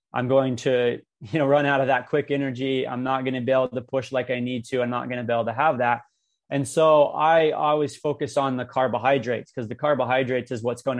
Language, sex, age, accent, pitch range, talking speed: English, male, 20-39, American, 125-145 Hz, 250 wpm